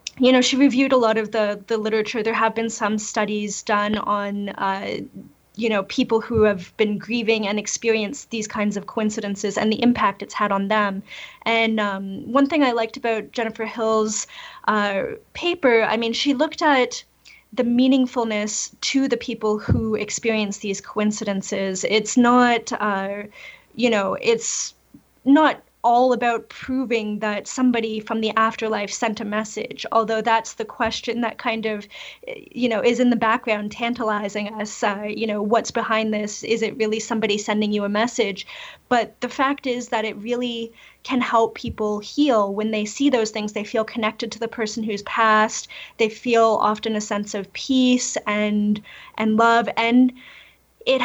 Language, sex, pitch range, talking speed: English, female, 210-240 Hz, 170 wpm